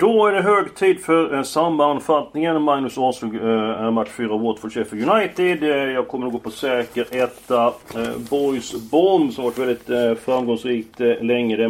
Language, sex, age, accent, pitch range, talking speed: Swedish, male, 40-59, native, 115-165 Hz, 180 wpm